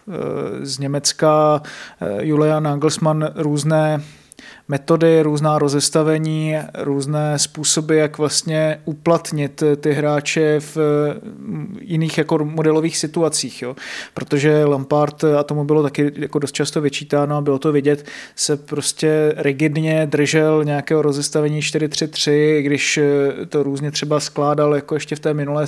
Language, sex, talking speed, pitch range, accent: Czech, male, 120 wpm, 145-155 Hz, native